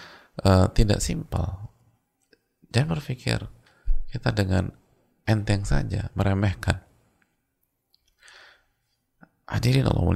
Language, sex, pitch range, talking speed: English, male, 90-110 Hz, 75 wpm